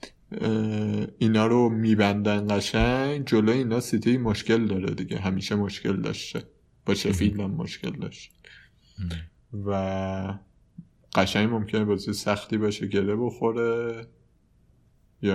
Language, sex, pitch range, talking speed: Persian, male, 95-110 Hz, 100 wpm